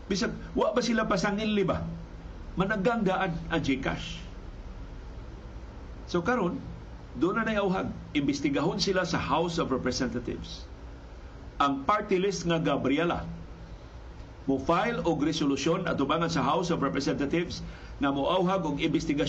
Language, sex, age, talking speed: Filipino, male, 50-69, 110 wpm